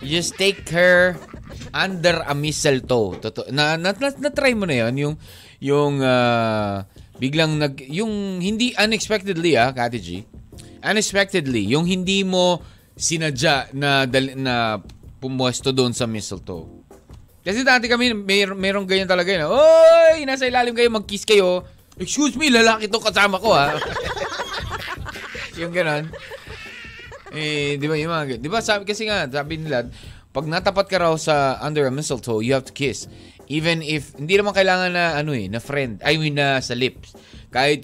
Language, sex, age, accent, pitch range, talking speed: Filipino, male, 20-39, native, 130-195 Hz, 155 wpm